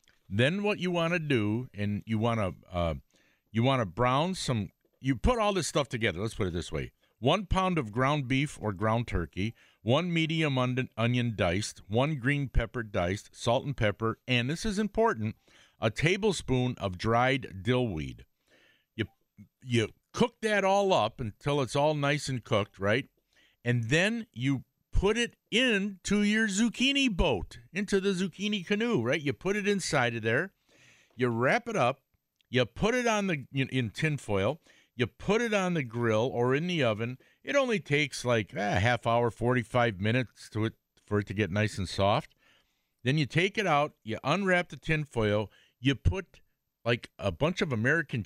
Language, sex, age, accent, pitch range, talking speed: English, male, 50-69, American, 110-165 Hz, 180 wpm